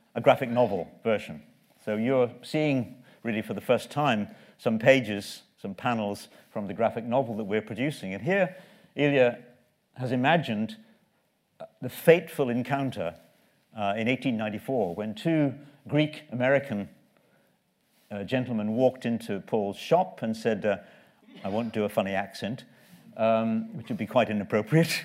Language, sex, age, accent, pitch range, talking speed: English, male, 60-79, British, 110-140 Hz, 140 wpm